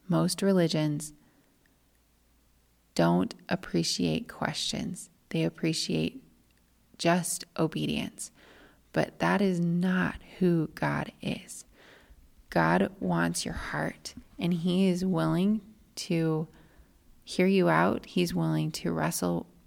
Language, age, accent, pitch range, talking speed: English, 30-49, American, 160-195 Hz, 100 wpm